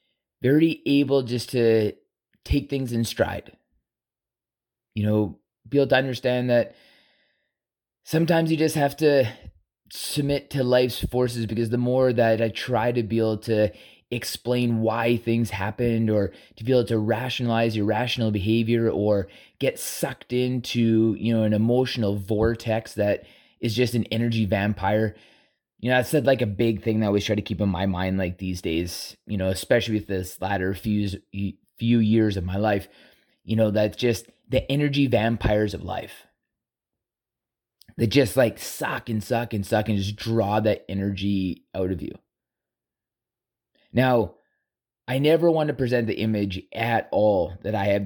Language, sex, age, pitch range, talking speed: English, male, 20-39, 105-125 Hz, 165 wpm